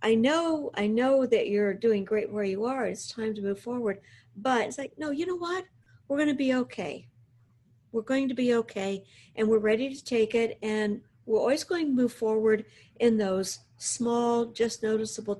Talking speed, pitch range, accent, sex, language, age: 195 wpm, 185-240 Hz, American, female, English, 50-69